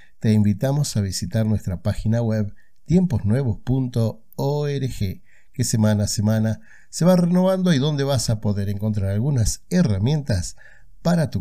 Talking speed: 130 wpm